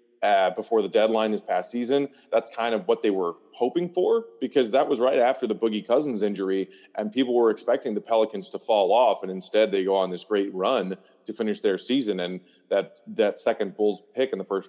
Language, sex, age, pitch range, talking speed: English, male, 30-49, 105-140 Hz, 220 wpm